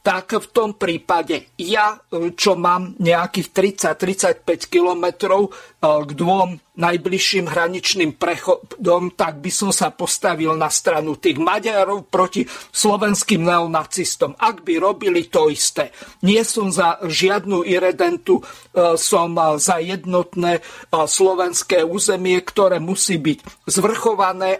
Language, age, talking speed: Slovak, 50-69, 110 wpm